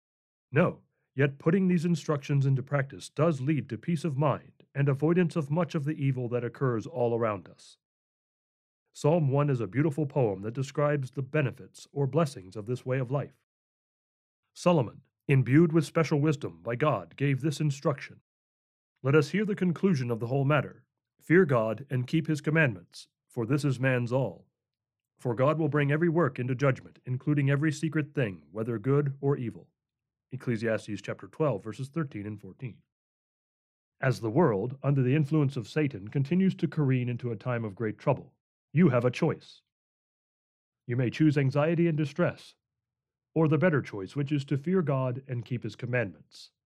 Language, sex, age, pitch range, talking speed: English, male, 40-59, 120-155 Hz, 175 wpm